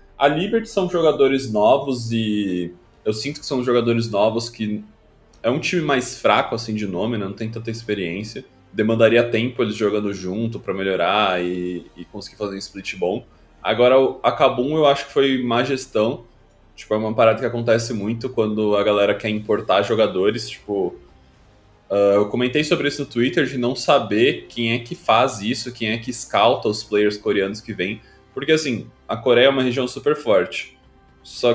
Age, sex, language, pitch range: 20-39, male, Portuguese, 105-135 Hz